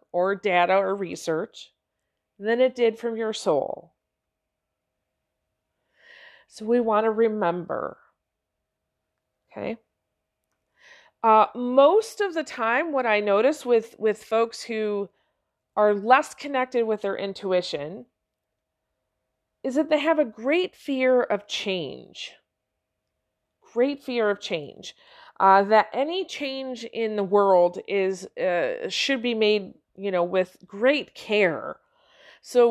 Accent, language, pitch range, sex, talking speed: American, English, 200-255 Hz, female, 120 wpm